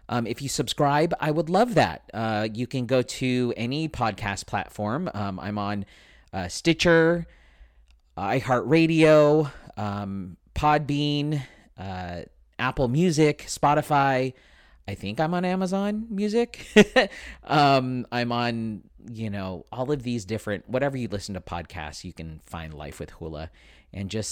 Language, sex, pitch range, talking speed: English, male, 95-135 Hz, 140 wpm